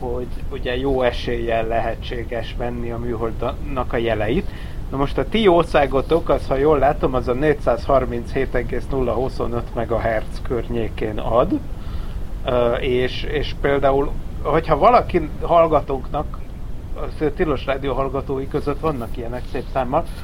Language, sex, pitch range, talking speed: Hungarian, male, 120-150 Hz, 120 wpm